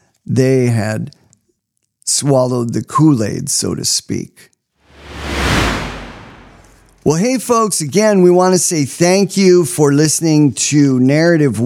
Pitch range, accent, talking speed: 120-160 Hz, American, 115 wpm